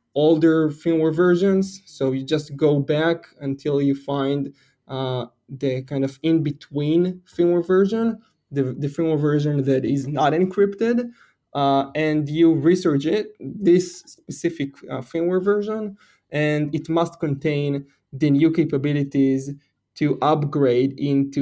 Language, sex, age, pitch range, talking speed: English, male, 20-39, 140-165 Hz, 130 wpm